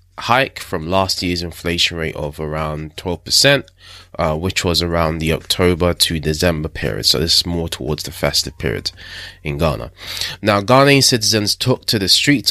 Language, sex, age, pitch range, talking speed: English, male, 20-39, 80-95 Hz, 170 wpm